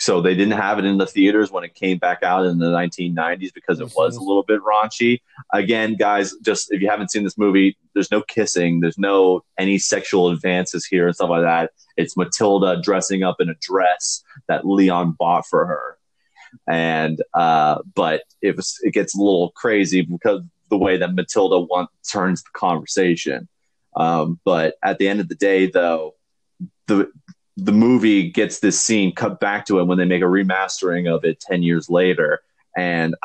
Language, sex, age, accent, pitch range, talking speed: English, male, 30-49, American, 90-105 Hz, 190 wpm